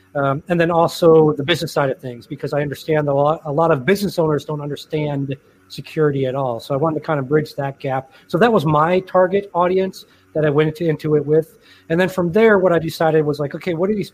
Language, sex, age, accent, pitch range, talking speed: English, male, 30-49, American, 145-185 Hz, 240 wpm